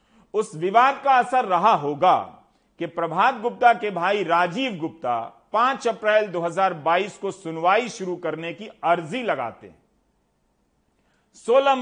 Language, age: Hindi, 50-69